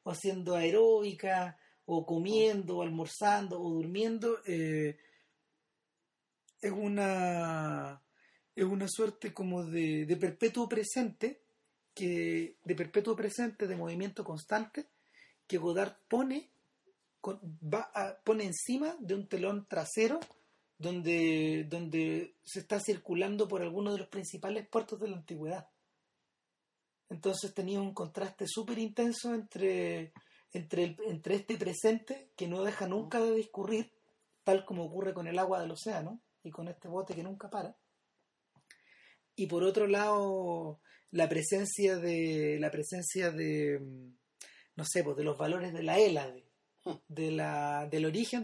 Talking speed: 135 wpm